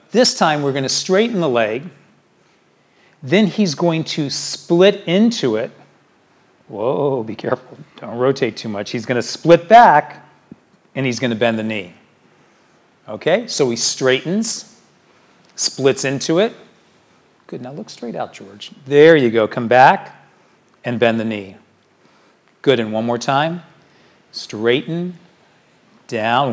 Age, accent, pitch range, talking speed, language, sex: 40-59, American, 115-160 Hz, 135 wpm, English, male